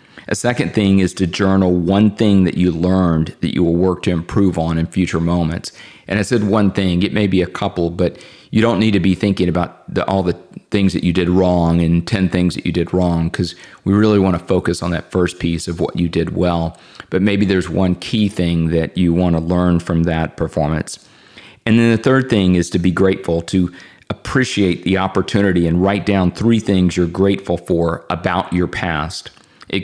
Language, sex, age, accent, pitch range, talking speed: English, male, 40-59, American, 85-100 Hz, 215 wpm